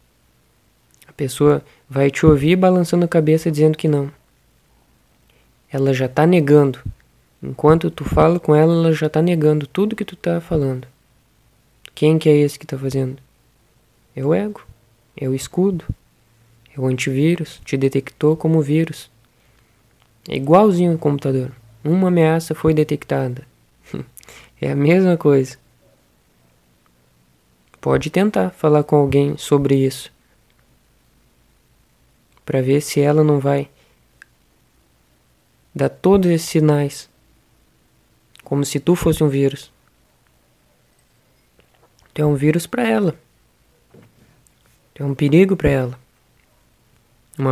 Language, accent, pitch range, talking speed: Portuguese, Brazilian, 125-155 Hz, 120 wpm